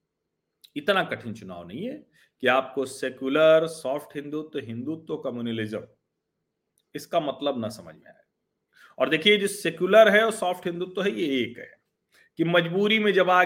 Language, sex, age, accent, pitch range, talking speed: Hindi, male, 40-59, native, 120-175 Hz, 155 wpm